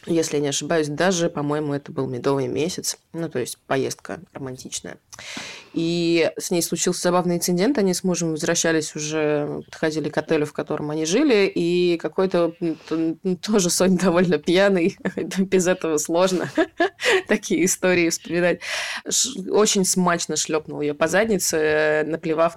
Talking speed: 145 wpm